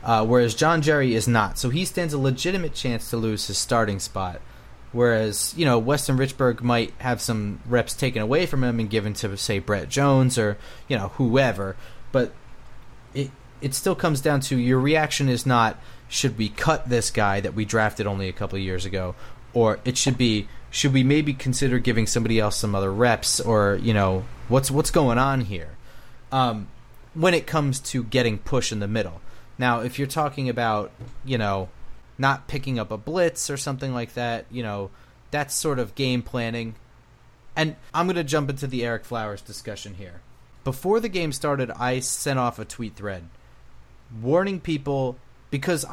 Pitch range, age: 110-140 Hz, 30-49